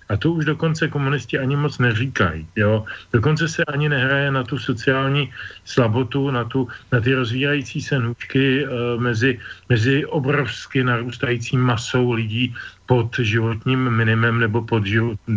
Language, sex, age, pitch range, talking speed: Slovak, male, 40-59, 110-130 Hz, 140 wpm